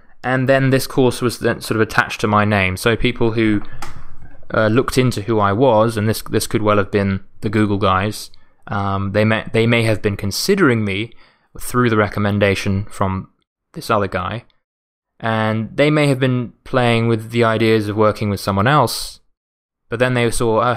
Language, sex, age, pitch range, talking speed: English, male, 20-39, 105-120 Hz, 190 wpm